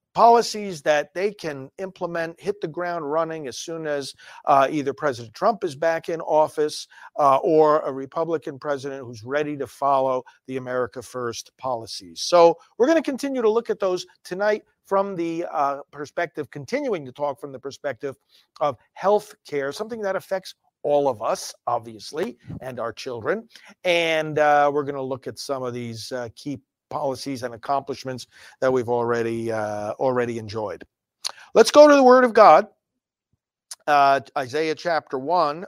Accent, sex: American, male